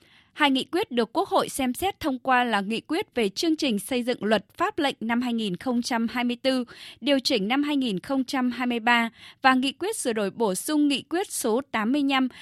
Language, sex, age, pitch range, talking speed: Vietnamese, female, 20-39, 225-285 Hz, 185 wpm